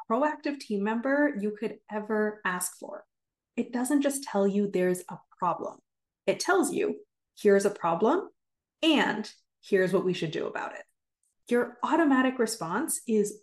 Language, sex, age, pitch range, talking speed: English, female, 30-49, 205-290 Hz, 150 wpm